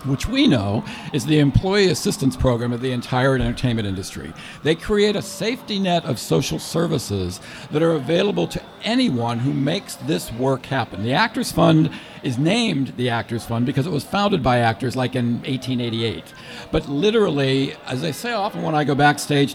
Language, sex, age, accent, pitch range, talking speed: English, male, 60-79, American, 125-160 Hz, 180 wpm